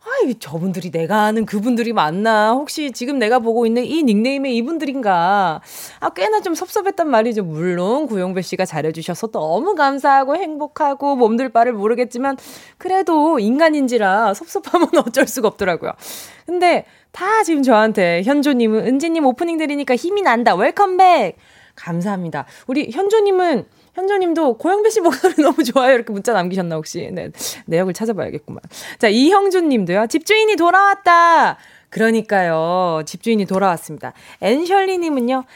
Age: 20-39